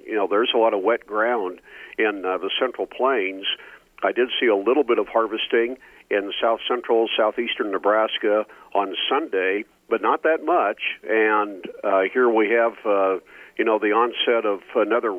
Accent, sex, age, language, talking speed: American, male, 50-69, English, 175 wpm